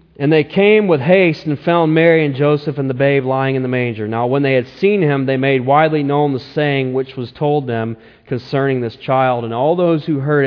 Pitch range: 125-155 Hz